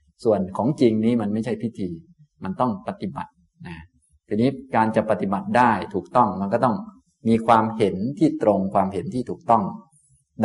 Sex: male